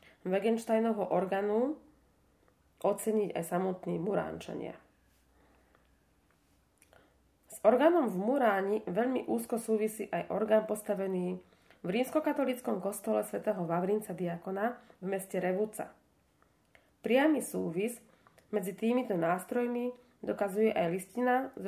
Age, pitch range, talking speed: 20-39, 185-235 Hz, 95 wpm